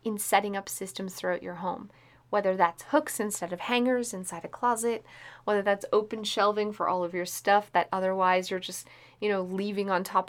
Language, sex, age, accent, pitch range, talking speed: English, female, 30-49, American, 185-225 Hz, 200 wpm